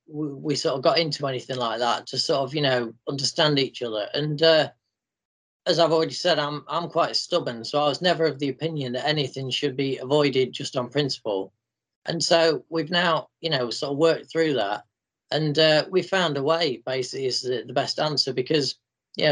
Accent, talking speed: British, 200 wpm